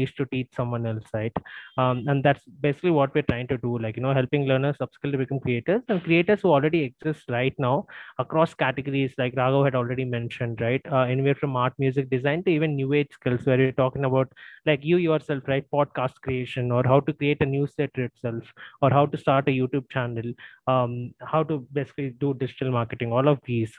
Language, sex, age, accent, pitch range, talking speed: English, male, 20-39, Indian, 130-155 Hz, 210 wpm